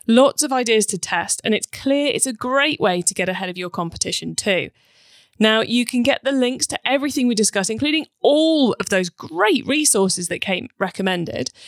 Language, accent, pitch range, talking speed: English, British, 185-260 Hz, 195 wpm